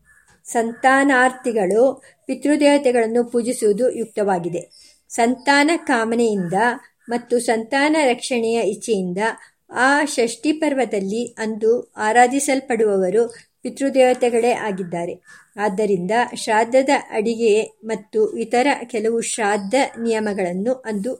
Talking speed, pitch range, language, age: 75 wpm, 220-265 Hz, Kannada, 50-69